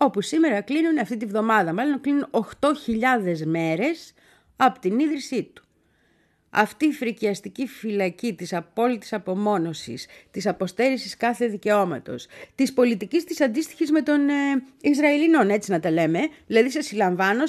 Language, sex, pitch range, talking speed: Greek, female, 185-280 Hz, 135 wpm